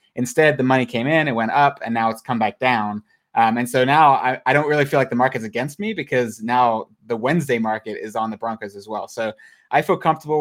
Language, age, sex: English, 20-39, male